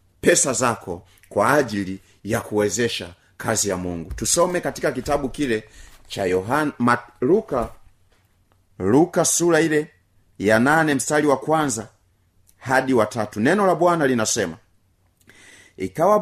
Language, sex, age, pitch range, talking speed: Swahili, male, 30-49, 95-150 Hz, 120 wpm